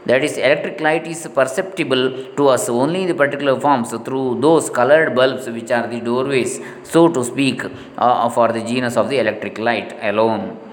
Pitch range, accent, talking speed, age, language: 125-185 Hz, Indian, 185 wpm, 20-39, English